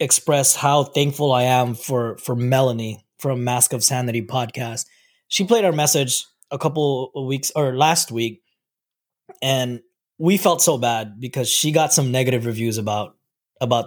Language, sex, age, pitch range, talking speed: English, male, 20-39, 125-150 Hz, 160 wpm